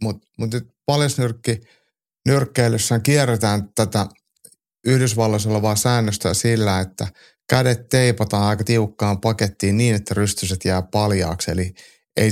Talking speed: 115 wpm